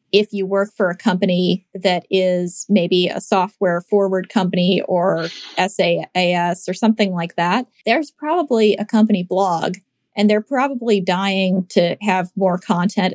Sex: female